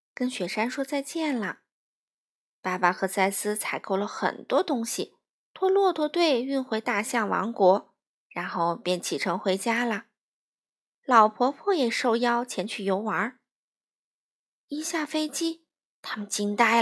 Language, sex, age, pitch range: Chinese, female, 20-39, 225-330 Hz